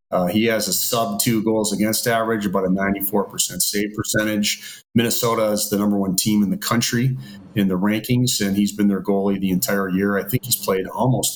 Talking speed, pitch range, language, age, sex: 200 wpm, 100-130 Hz, English, 40-59, male